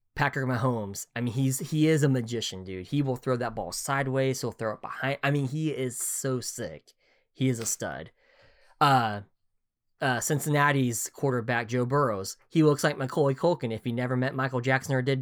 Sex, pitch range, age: male, 125-160 Hz, 20-39